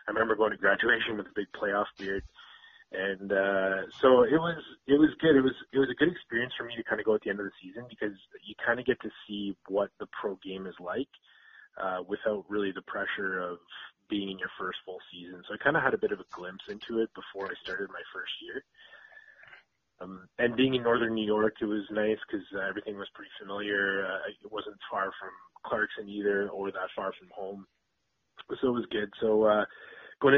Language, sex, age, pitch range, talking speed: English, male, 20-39, 95-110 Hz, 225 wpm